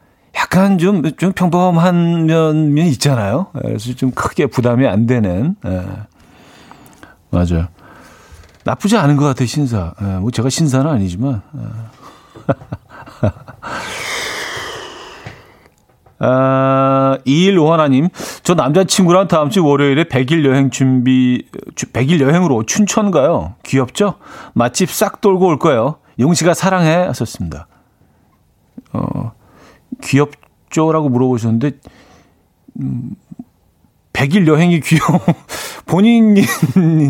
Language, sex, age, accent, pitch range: Korean, male, 40-59, native, 115-165 Hz